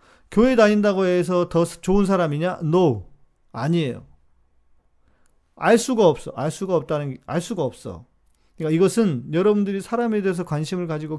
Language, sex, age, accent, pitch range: Korean, male, 40-59, native, 130-180 Hz